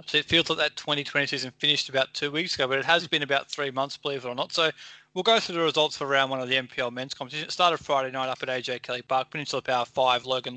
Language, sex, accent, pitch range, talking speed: English, male, Australian, 135-155 Hz, 285 wpm